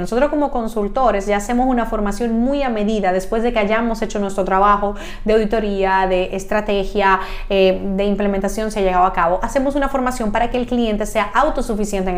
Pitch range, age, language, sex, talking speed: 195-230 Hz, 30-49, Spanish, female, 190 wpm